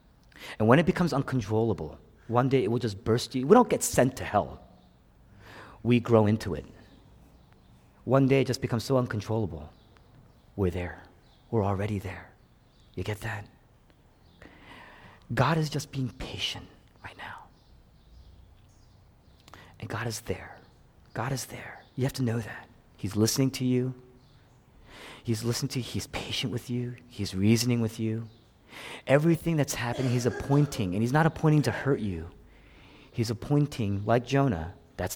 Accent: American